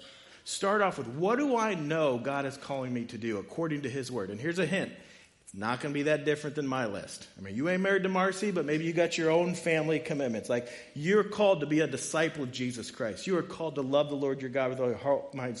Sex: male